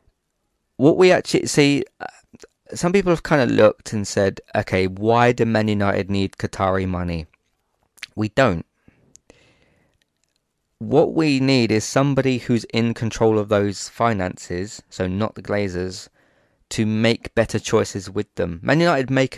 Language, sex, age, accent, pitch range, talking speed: English, male, 20-39, British, 95-115 Hz, 140 wpm